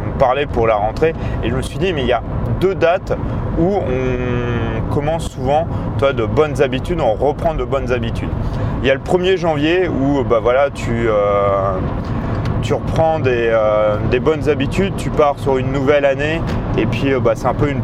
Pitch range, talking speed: 115-140 Hz, 200 wpm